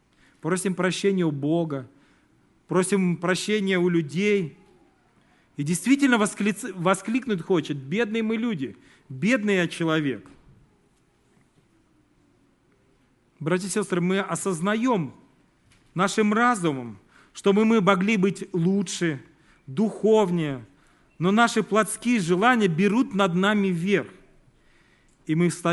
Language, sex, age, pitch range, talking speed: Russian, male, 40-59, 140-195 Hz, 95 wpm